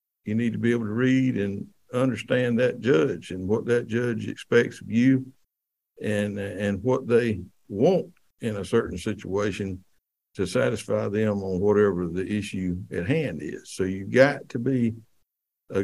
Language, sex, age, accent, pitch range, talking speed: English, male, 60-79, American, 100-120 Hz, 165 wpm